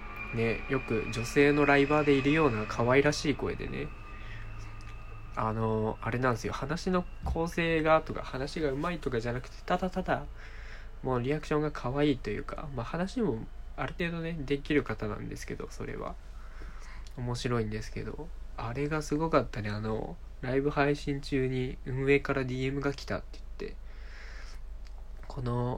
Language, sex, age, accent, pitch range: Japanese, male, 20-39, native, 105-145 Hz